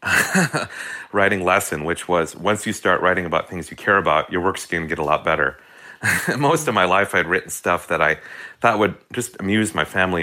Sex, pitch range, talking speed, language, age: male, 90-115 Hz, 210 wpm, English, 40-59